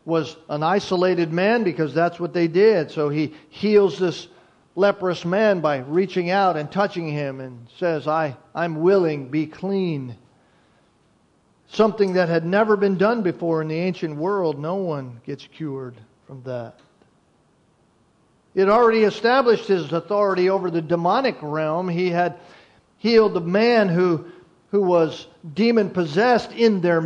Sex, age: male, 50-69